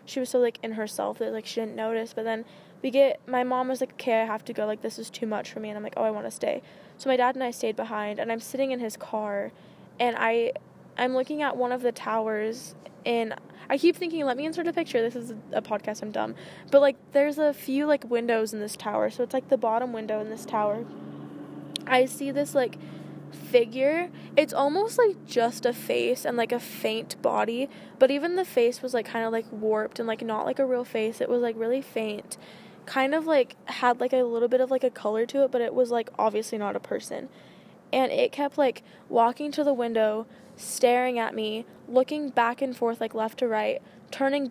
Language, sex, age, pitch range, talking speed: English, female, 10-29, 225-265 Hz, 235 wpm